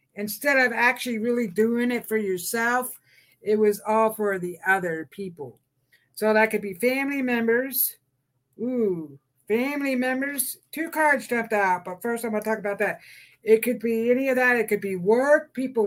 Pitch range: 195-245 Hz